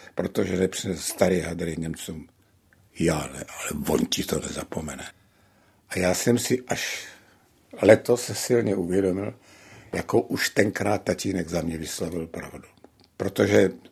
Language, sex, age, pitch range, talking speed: Czech, male, 60-79, 95-125 Hz, 130 wpm